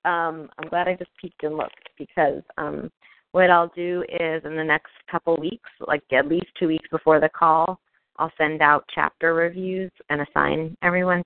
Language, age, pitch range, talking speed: English, 30-49, 150-170 Hz, 185 wpm